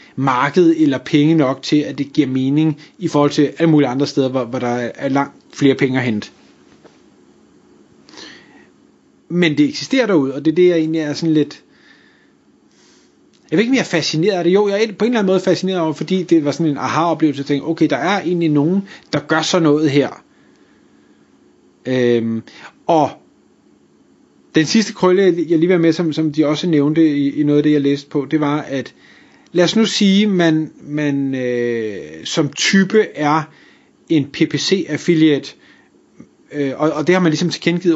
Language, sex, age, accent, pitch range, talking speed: Danish, male, 30-49, native, 145-185 Hz, 180 wpm